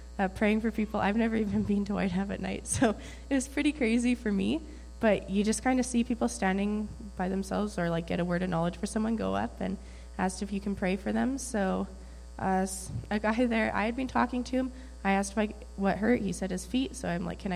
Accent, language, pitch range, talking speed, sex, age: American, English, 175-215 Hz, 250 wpm, female, 20-39